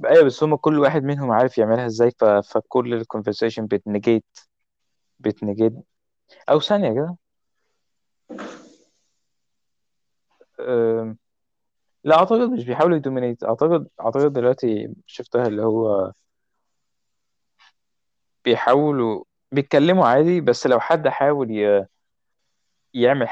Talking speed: 105 wpm